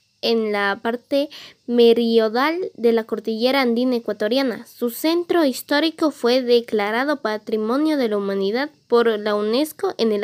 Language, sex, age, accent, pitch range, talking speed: Spanish, female, 20-39, Mexican, 225-280 Hz, 135 wpm